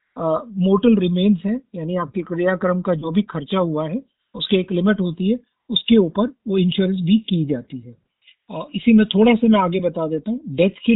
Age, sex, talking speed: 50-69, male, 210 wpm